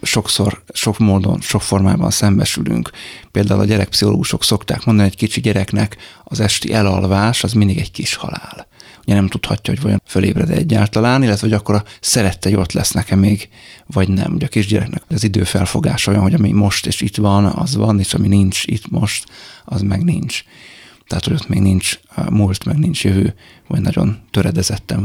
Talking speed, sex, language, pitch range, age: 180 wpm, male, Hungarian, 95-105 Hz, 30-49